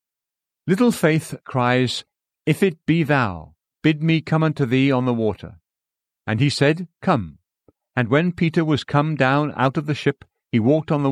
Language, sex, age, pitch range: English, male, 50-69, 115-155 Hz